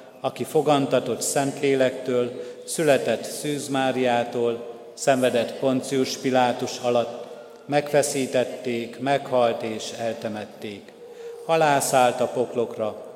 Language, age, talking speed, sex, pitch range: Hungarian, 50-69, 75 wpm, male, 125-140 Hz